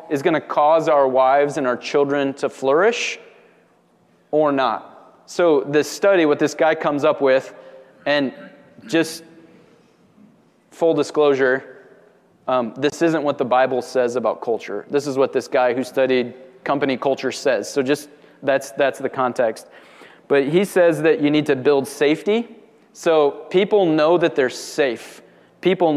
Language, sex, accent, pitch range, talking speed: English, male, American, 135-165 Hz, 155 wpm